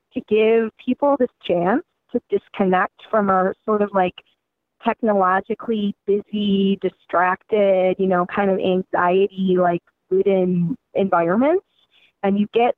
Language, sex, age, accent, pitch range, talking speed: English, female, 20-39, American, 185-250 Hz, 120 wpm